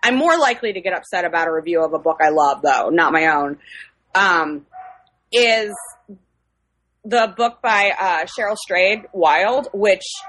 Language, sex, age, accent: English, female, 20-39, American